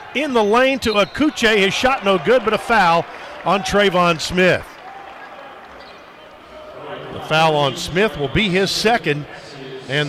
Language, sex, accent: English, male, American